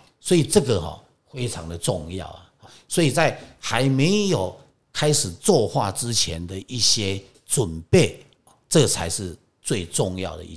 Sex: male